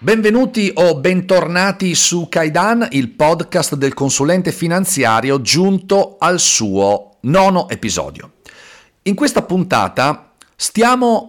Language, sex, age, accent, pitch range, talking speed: Italian, male, 40-59, native, 110-170 Hz, 100 wpm